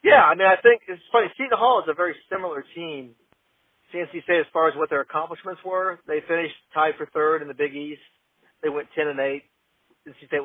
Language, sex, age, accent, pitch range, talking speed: English, male, 40-59, American, 145-170 Hz, 225 wpm